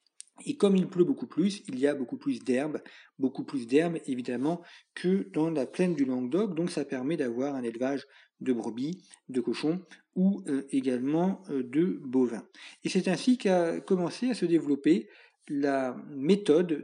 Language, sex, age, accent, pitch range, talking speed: French, male, 50-69, French, 140-215 Hz, 165 wpm